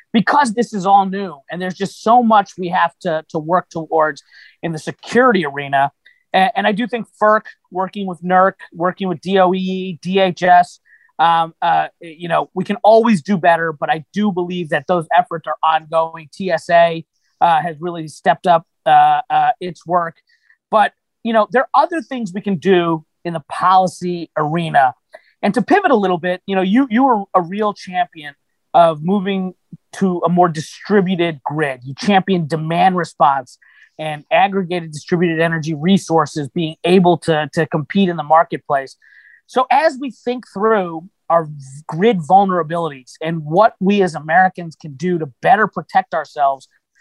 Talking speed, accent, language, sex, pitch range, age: 170 wpm, American, English, male, 165-200 Hz, 30-49